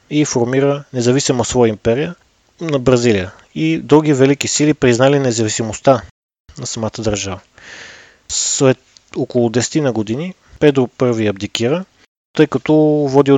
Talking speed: 120 wpm